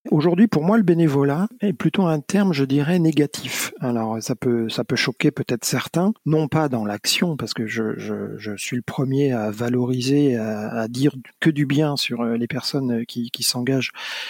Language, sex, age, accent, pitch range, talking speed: French, male, 40-59, French, 130-170 Hz, 185 wpm